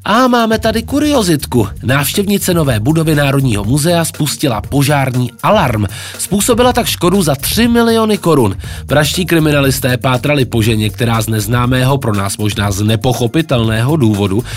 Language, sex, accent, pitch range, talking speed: Czech, male, native, 105-150 Hz, 135 wpm